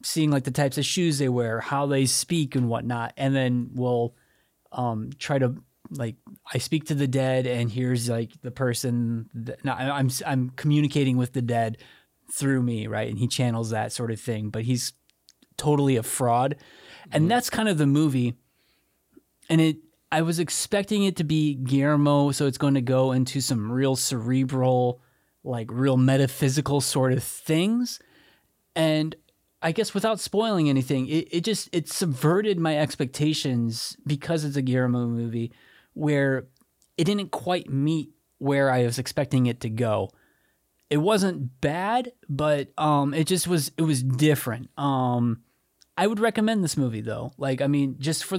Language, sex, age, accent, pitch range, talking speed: English, male, 20-39, American, 125-150 Hz, 165 wpm